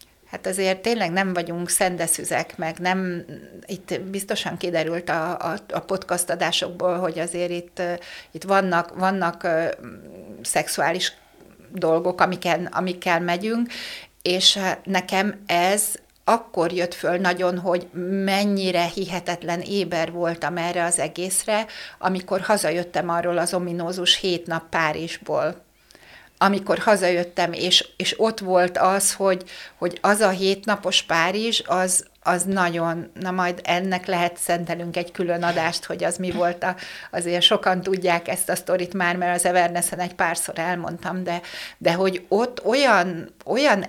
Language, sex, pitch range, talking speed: Hungarian, female, 175-190 Hz, 135 wpm